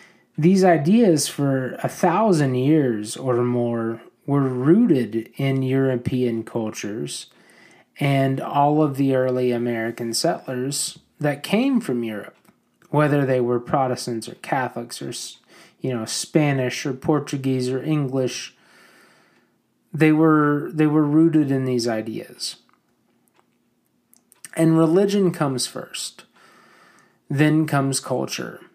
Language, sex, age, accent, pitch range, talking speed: English, male, 30-49, American, 125-155 Hz, 110 wpm